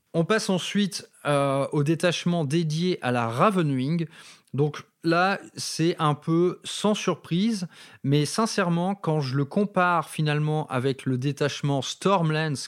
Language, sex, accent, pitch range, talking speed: French, male, French, 130-165 Hz, 135 wpm